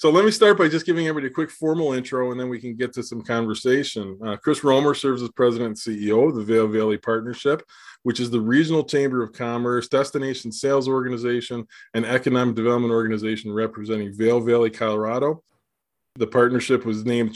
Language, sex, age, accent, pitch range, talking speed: English, male, 20-39, American, 115-130 Hz, 190 wpm